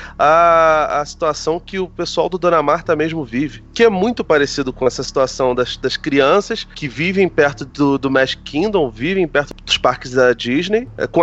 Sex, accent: male, Brazilian